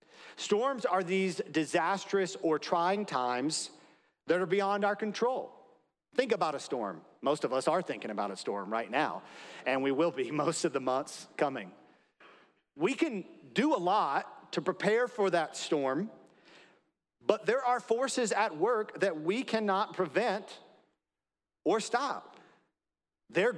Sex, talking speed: male, 150 wpm